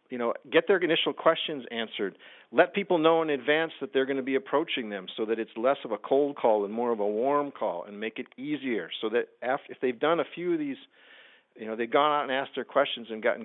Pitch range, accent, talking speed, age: 110-145 Hz, American, 260 wpm, 50-69